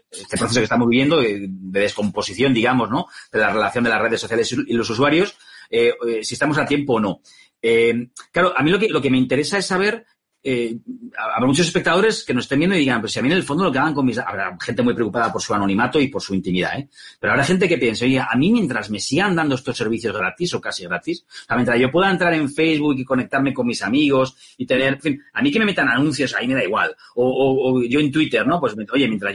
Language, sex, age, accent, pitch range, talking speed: Spanish, male, 40-59, Spanish, 125-175 Hz, 260 wpm